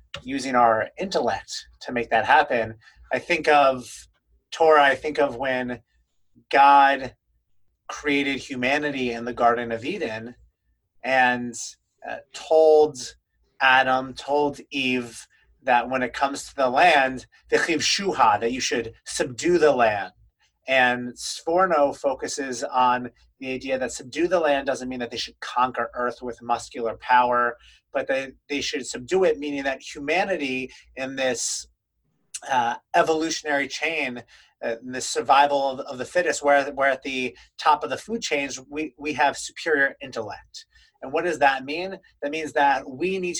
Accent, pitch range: American, 125-150 Hz